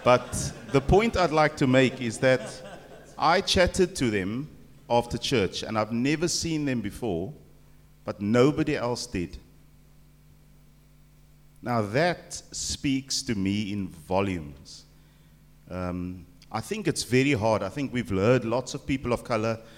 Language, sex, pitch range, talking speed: English, male, 95-130 Hz, 145 wpm